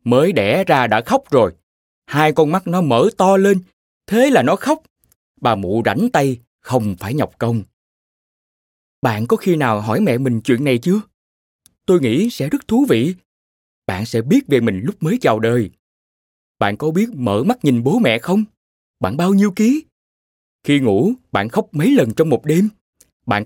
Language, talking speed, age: Vietnamese, 185 wpm, 20-39